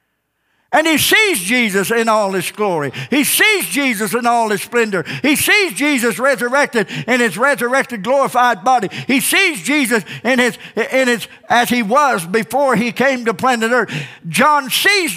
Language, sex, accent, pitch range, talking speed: English, male, American, 180-285 Hz, 165 wpm